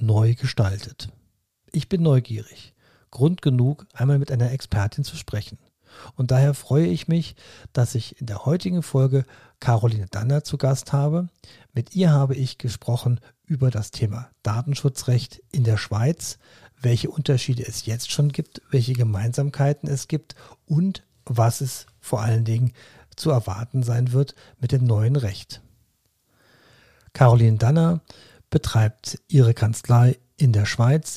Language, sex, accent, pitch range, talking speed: German, male, German, 115-140 Hz, 140 wpm